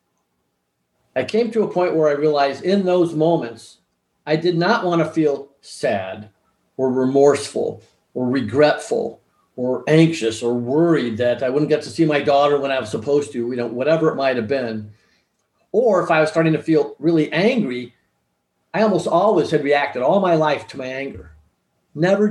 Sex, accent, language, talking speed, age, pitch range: male, American, English, 180 wpm, 50-69, 125-165 Hz